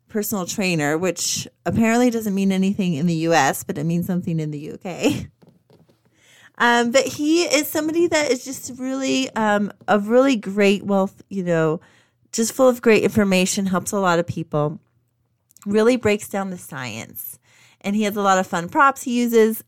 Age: 30-49